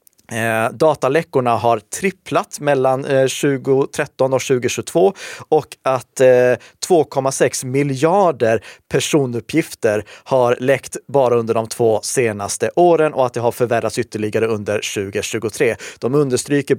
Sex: male